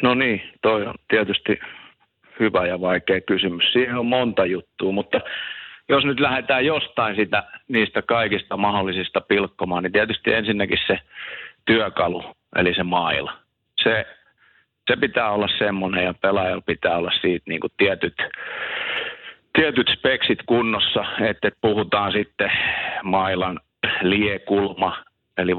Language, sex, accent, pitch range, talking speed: Finnish, male, native, 95-105 Hz, 125 wpm